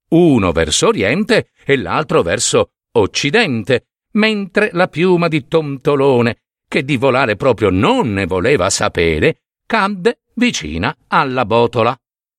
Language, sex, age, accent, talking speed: Italian, male, 50-69, native, 115 wpm